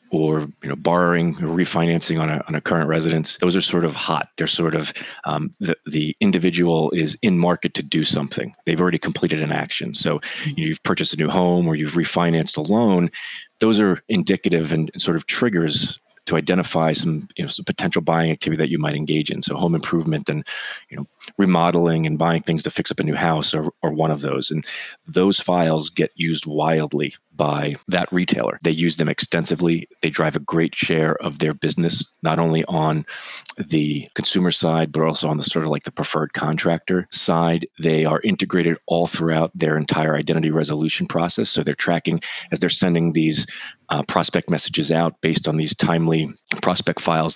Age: 30-49